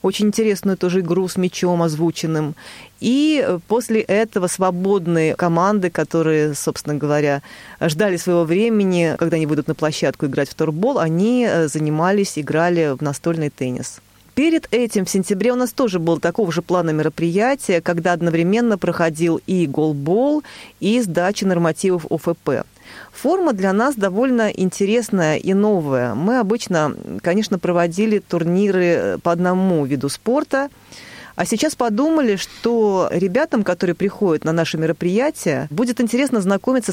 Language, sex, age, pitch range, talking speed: Russian, female, 30-49, 165-225 Hz, 135 wpm